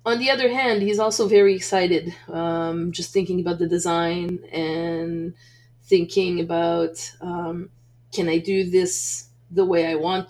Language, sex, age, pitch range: English, female, 20-39, 165-195 Hz